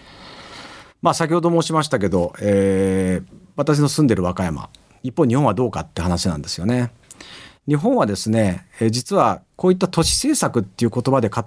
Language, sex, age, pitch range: Japanese, male, 50-69, 105-175 Hz